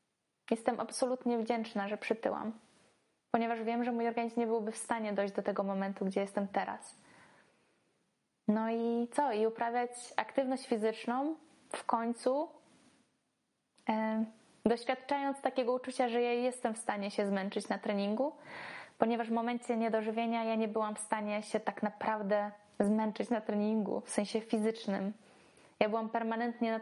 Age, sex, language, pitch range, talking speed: 20-39, female, Polish, 215-255 Hz, 145 wpm